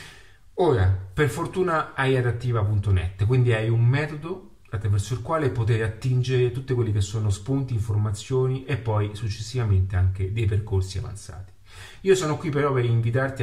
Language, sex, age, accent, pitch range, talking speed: Italian, male, 30-49, native, 100-125 Hz, 145 wpm